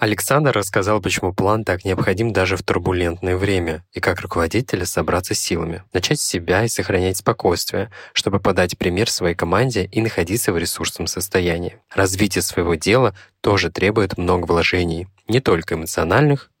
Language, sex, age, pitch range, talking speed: Russian, male, 20-39, 85-100 Hz, 150 wpm